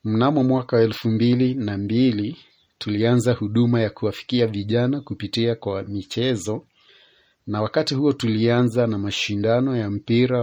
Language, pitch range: Swahili, 105-125 Hz